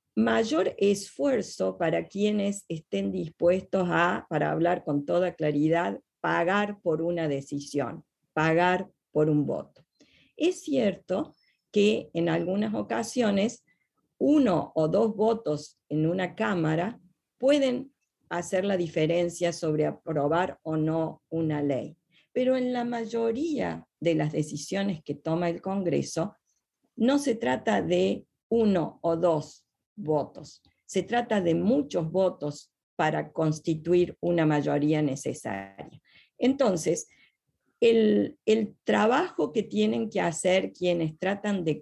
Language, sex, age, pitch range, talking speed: English, female, 40-59, 155-210 Hz, 120 wpm